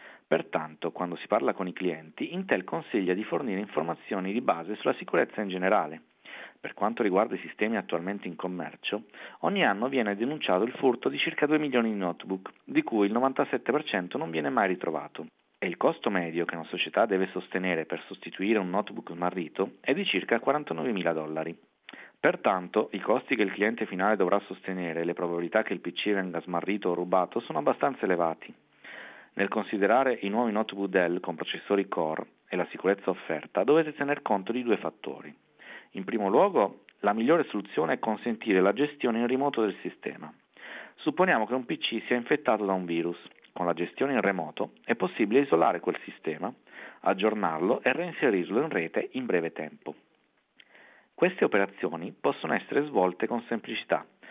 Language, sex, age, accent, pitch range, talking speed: Italian, male, 40-59, native, 90-115 Hz, 170 wpm